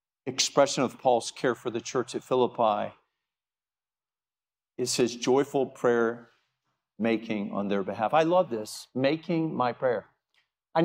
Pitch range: 130-175 Hz